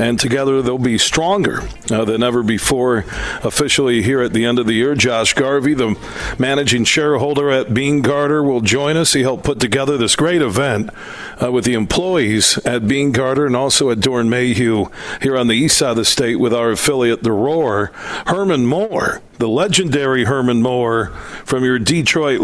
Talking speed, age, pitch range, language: 180 wpm, 50-69, 120-145 Hz, English